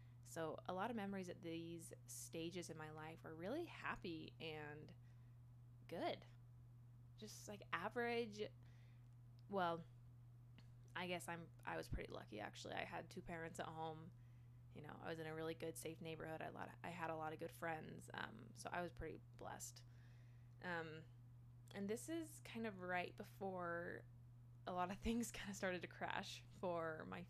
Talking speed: 175 wpm